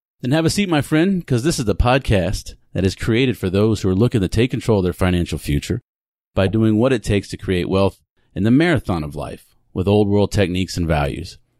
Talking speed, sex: 235 wpm, male